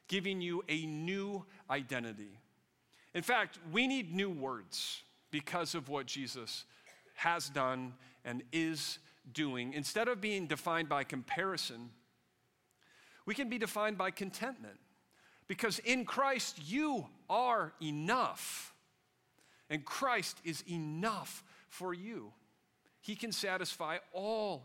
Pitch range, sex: 145-215 Hz, male